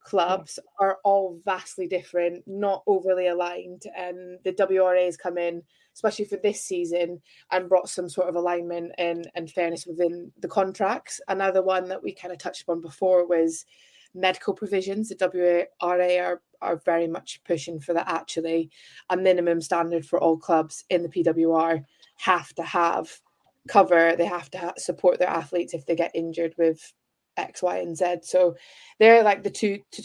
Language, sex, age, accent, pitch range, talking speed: English, female, 20-39, British, 175-200 Hz, 170 wpm